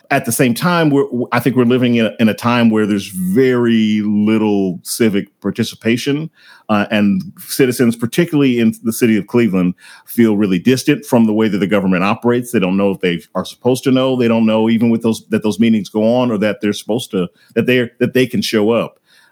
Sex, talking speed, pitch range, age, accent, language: male, 220 wpm, 105-135 Hz, 40-59, American, English